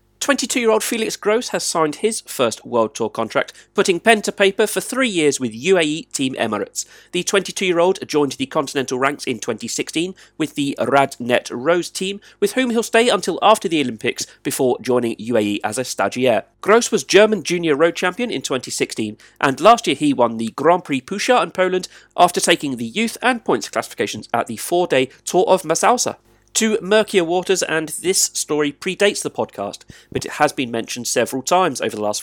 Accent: British